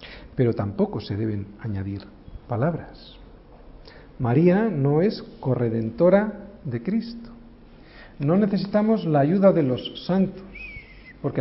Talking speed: 105 wpm